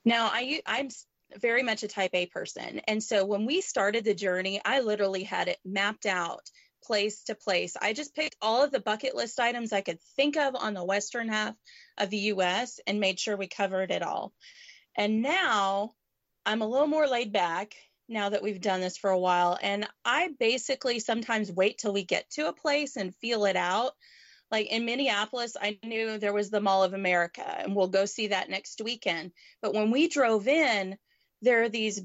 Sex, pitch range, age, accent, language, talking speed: female, 195-245 Hz, 30-49, American, English, 205 wpm